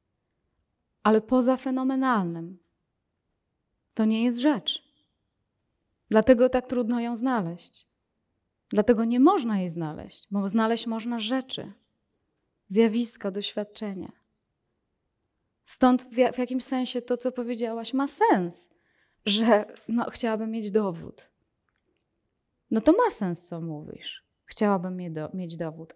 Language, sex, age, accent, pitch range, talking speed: Polish, female, 20-39, native, 180-245 Hz, 105 wpm